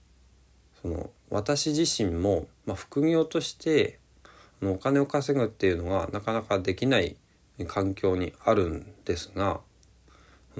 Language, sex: Japanese, male